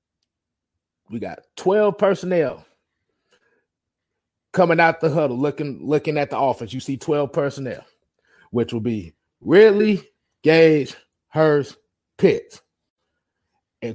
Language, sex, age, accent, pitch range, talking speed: English, male, 30-49, American, 125-165 Hz, 110 wpm